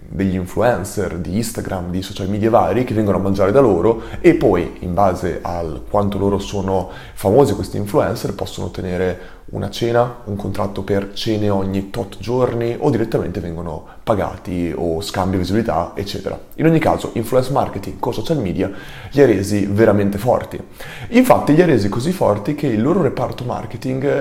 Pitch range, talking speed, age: 100-115 Hz, 170 wpm, 30-49